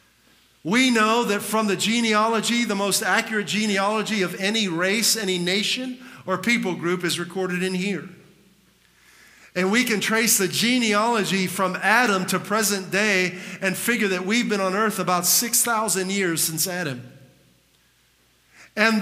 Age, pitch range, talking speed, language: 50-69, 190-230 Hz, 145 wpm, English